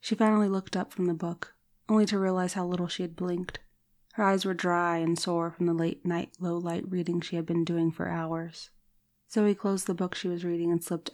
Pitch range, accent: 165-190 Hz, American